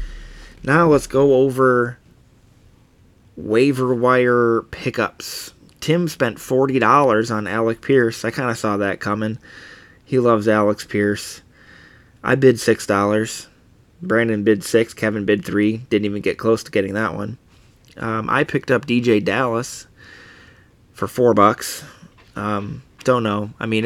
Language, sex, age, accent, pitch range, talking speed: English, male, 20-39, American, 105-125 Hz, 145 wpm